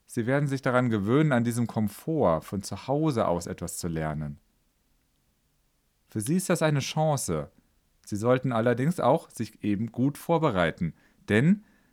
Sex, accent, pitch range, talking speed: male, German, 95-140 Hz, 150 wpm